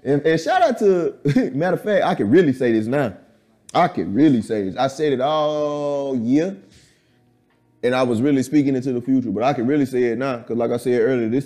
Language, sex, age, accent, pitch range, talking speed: English, male, 30-49, American, 125-165 Hz, 235 wpm